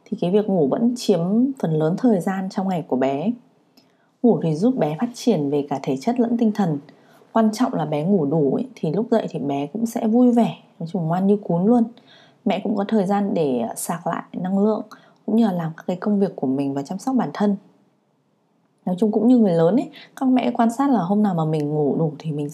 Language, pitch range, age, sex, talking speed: Vietnamese, 165-230 Hz, 20-39, female, 250 wpm